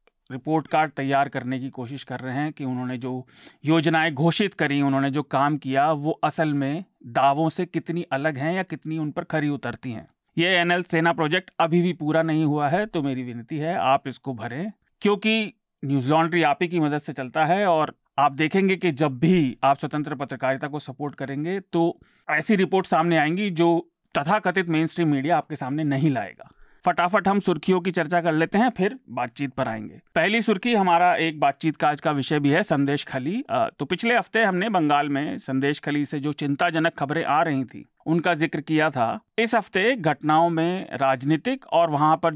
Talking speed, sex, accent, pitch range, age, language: 195 wpm, male, native, 140-175 Hz, 40-59, Hindi